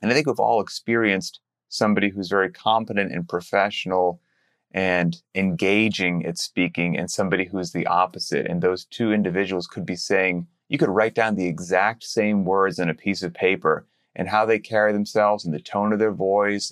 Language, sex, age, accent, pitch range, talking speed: English, male, 30-49, American, 90-115 Hz, 190 wpm